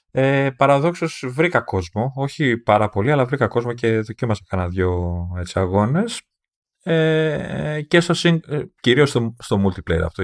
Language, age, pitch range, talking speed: Greek, 30-49, 90-130 Hz, 135 wpm